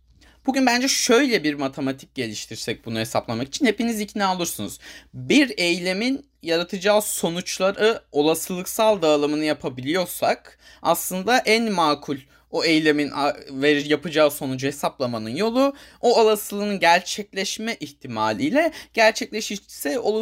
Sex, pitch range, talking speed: male, 140-225 Hz, 100 wpm